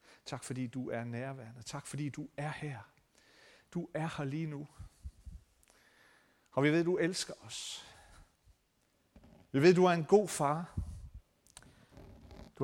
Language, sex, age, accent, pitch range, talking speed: Danish, male, 40-59, native, 130-165 Hz, 145 wpm